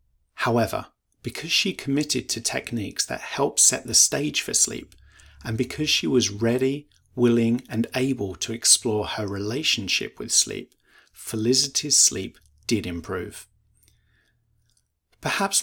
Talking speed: 125 wpm